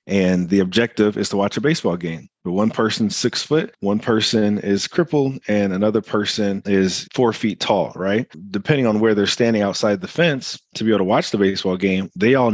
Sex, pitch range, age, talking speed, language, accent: male, 95-115 Hz, 30-49, 210 wpm, English, American